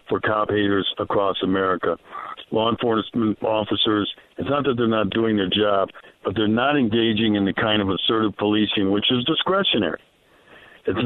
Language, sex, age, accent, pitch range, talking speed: English, male, 60-79, American, 105-120 Hz, 165 wpm